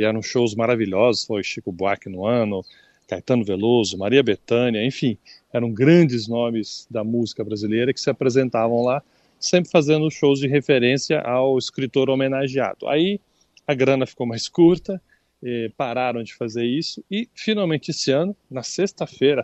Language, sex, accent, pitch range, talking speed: Portuguese, male, Brazilian, 115-150 Hz, 150 wpm